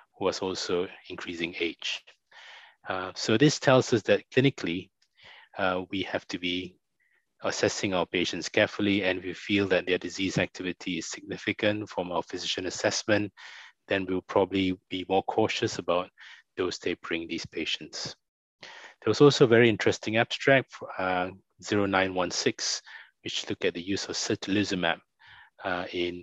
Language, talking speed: English, 140 wpm